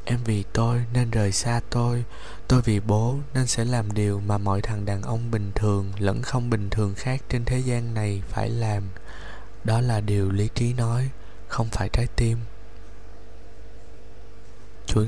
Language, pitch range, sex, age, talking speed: Vietnamese, 105-120 Hz, male, 20-39, 170 wpm